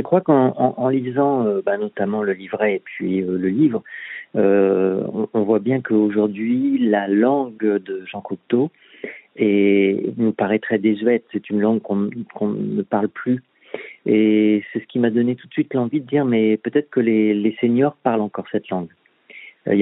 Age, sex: 50-69, male